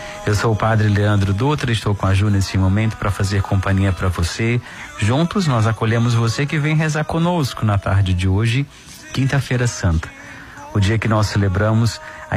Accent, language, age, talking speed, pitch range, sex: Brazilian, Portuguese, 40-59, 180 wpm, 100-120 Hz, male